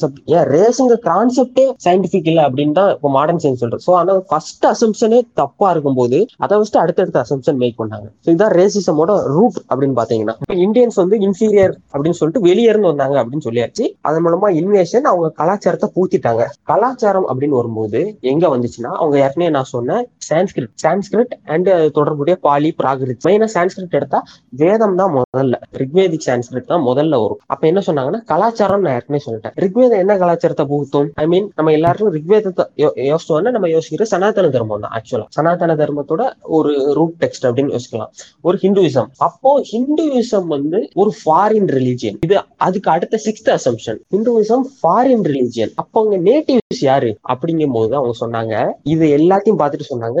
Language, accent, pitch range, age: Tamil, native, 140-205 Hz, 20-39